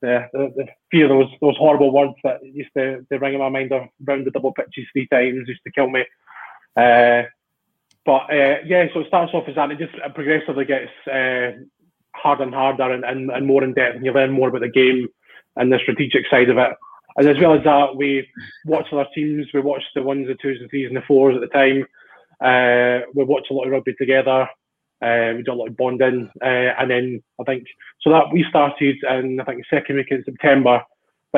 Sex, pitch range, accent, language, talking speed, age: male, 125-140 Hz, British, English, 230 wpm, 20-39